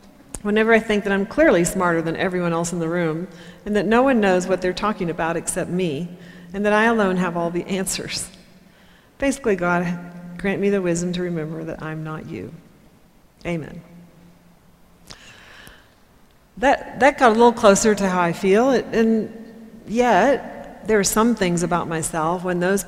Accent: American